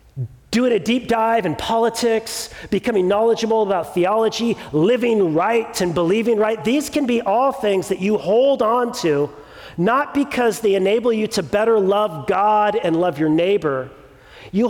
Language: English